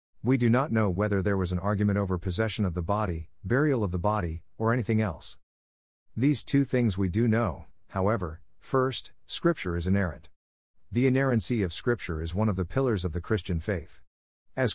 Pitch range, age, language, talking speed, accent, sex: 90-120 Hz, 50-69, English, 185 wpm, American, male